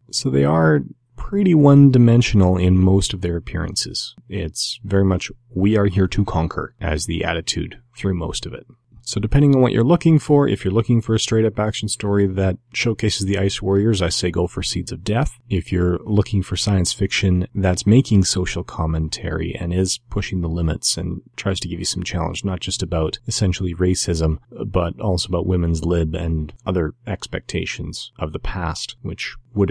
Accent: American